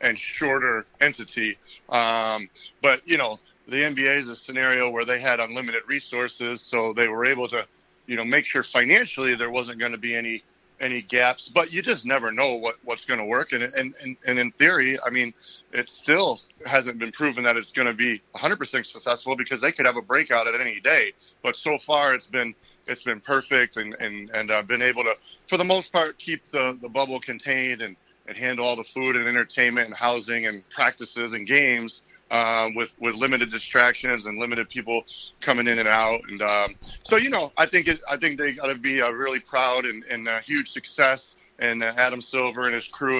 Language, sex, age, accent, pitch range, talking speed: English, male, 30-49, American, 115-130 Hz, 215 wpm